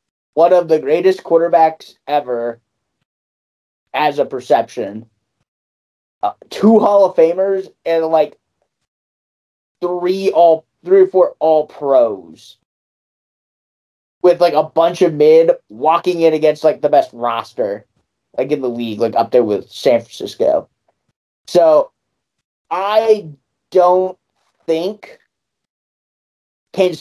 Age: 30-49